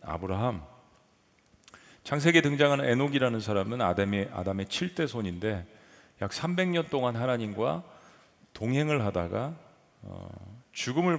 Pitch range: 95-135 Hz